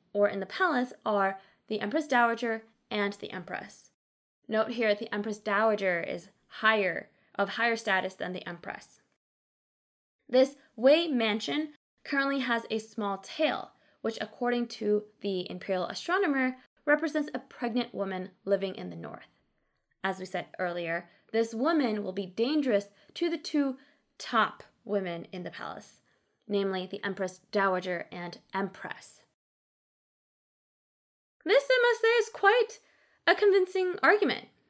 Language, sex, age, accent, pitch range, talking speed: English, female, 20-39, American, 205-295 Hz, 135 wpm